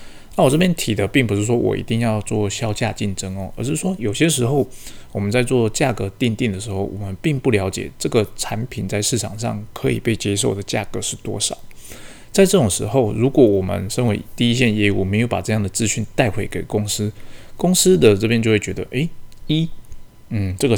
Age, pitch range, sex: 20-39, 100-120 Hz, male